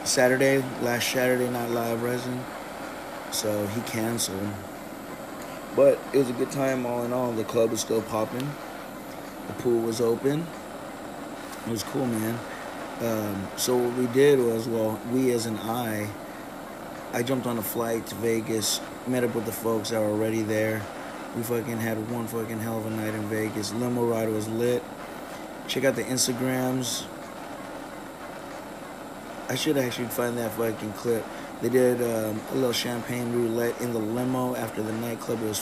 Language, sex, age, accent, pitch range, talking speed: English, male, 30-49, American, 110-125 Hz, 165 wpm